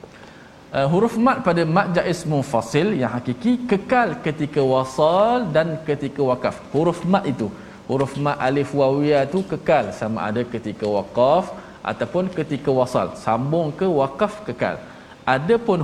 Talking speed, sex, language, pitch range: 140 wpm, male, Malayalam, 115-160 Hz